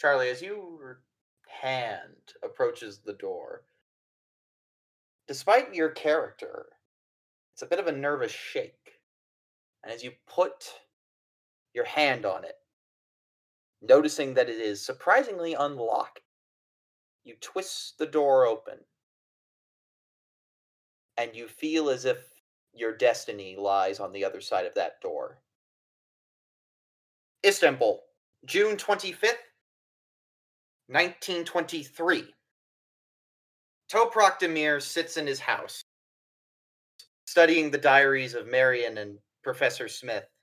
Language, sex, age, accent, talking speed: English, male, 30-49, American, 100 wpm